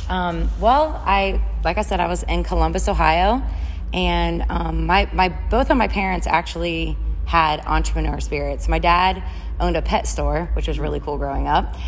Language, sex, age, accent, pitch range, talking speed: English, female, 20-39, American, 145-170 Hz, 175 wpm